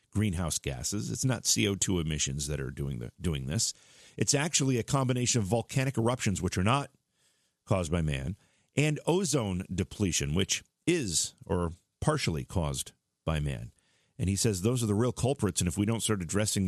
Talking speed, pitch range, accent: 180 wpm, 85-120 Hz, American